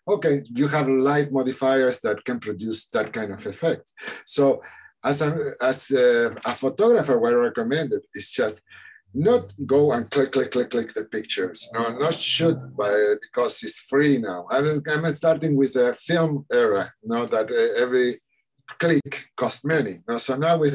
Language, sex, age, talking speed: English, male, 60-79, 180 wpm